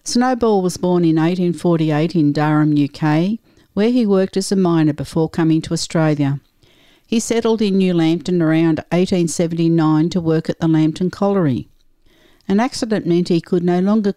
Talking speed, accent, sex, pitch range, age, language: 160 wpm, Australian, female, 160-185 Hz, 60-79, English